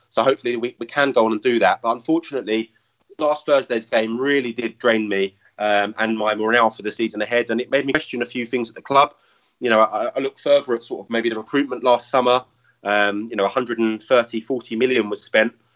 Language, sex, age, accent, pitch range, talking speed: English, male, 30-49, British, 115-140 Hz, 230 wpm